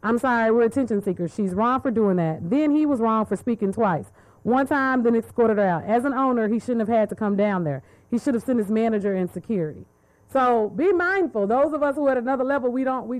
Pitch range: 215-275 Hz